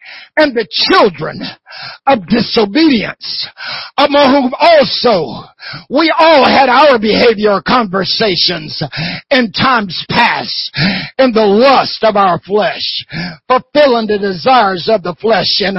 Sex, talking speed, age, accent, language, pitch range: male, 115 wpm, 60-79, American, English, 195-315 Hz